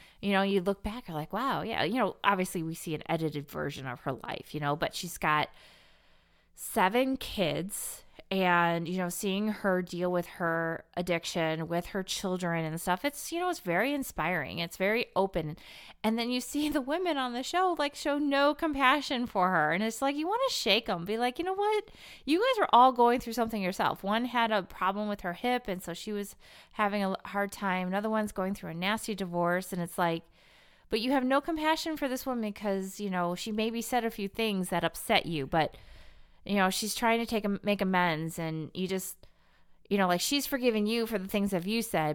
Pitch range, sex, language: 175-235 Hz, female, English